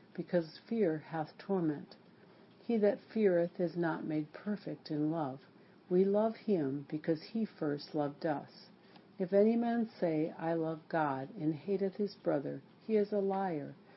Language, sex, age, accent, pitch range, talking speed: English, female, 60-79, American, 160-205 Hz, 155 wpm